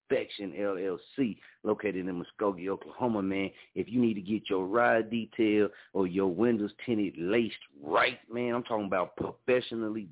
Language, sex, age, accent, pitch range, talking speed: English, male, 40-59, American, 100-125 Hz, 155 wpm